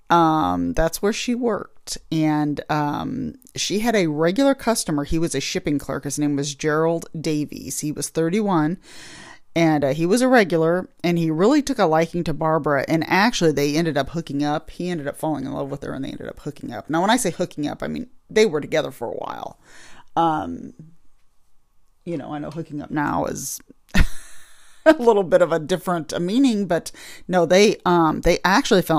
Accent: American